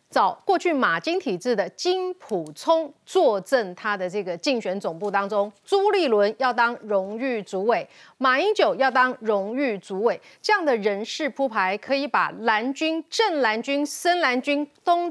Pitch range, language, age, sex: 210-320 Hz, Chinese, 30-49, female